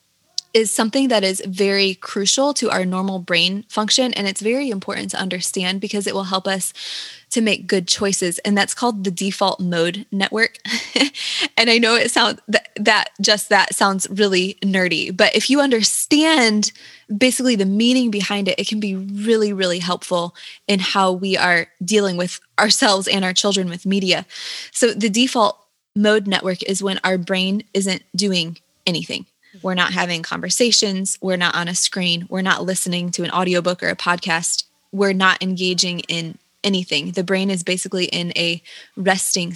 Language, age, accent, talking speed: English, 20-39, American, 170 wpm